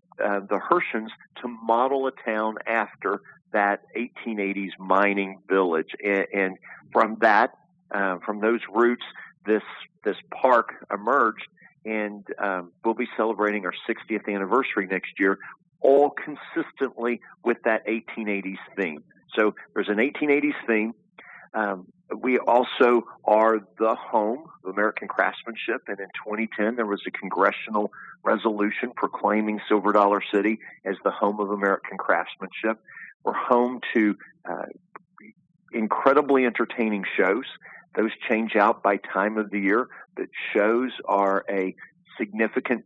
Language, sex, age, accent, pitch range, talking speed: English, male, 50-69, American, 100-120 Hz, 130 wpm